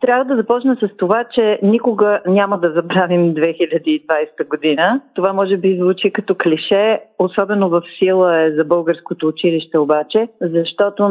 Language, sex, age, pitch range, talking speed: Bulgarian, female, 40-59, 155-190 Hz, 145 wpm